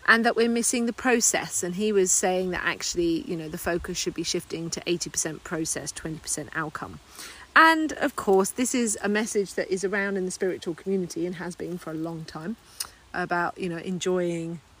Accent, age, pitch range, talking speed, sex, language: British, 40-59, 180-255 Hz, 200 wpm, female, English